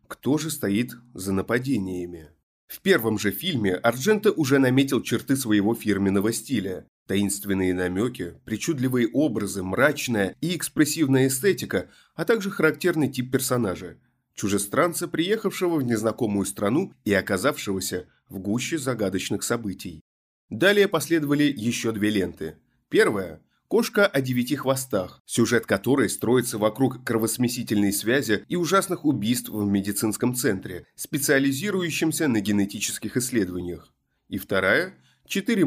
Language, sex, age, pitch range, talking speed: Russian, male, 30-49, 100-150 Hz, 115 wpm